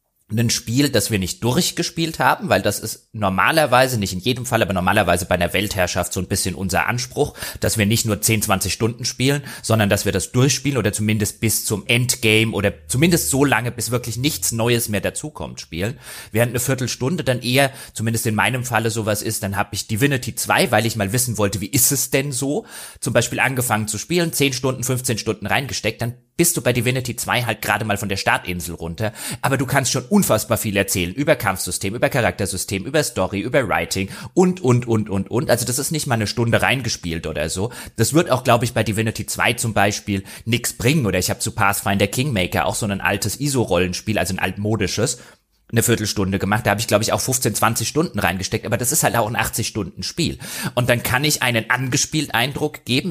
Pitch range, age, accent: 100-125 Hz, 30-49, German